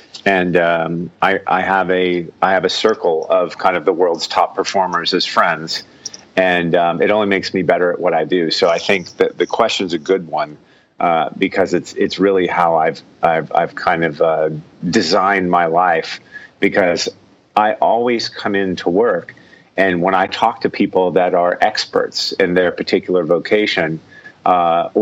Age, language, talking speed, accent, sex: 40-59, English, 180 wpm, American, male